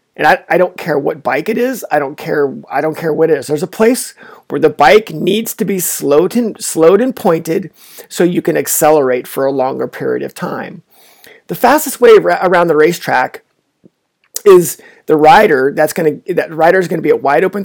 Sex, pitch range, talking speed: male, 150-230 Hz, 215 wpm